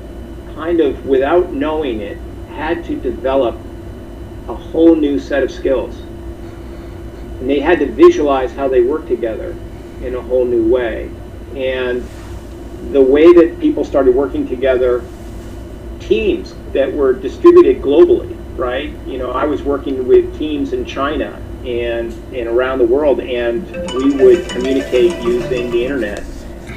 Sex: male